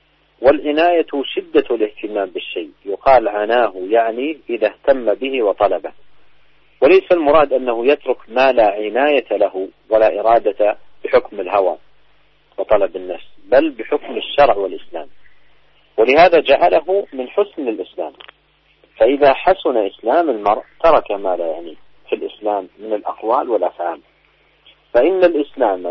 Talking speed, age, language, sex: 115 wpm, 40-59, English, male